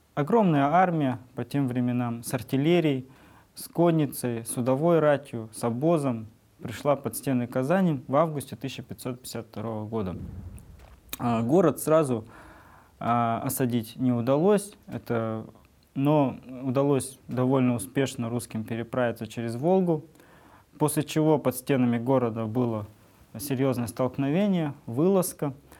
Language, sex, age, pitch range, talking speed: English, male, 20-39, 120-155 Hz, 100 wpm